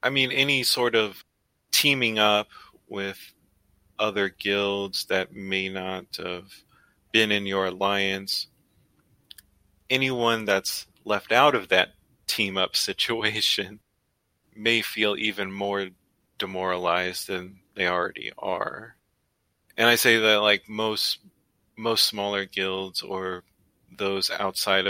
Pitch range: 95-110 Hz